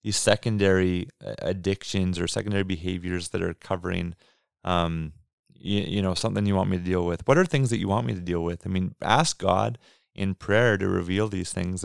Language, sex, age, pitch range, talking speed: English, male, 30-49, 90-105 Hz, 205 wpm